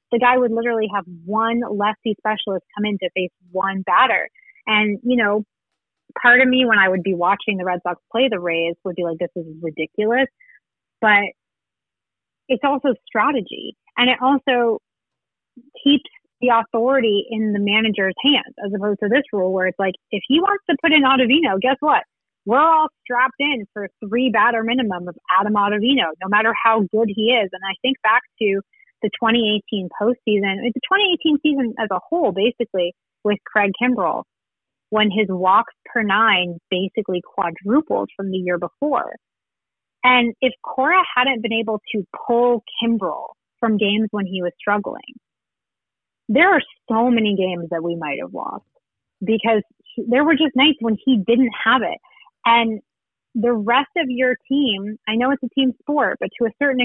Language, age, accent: English, 30-49, American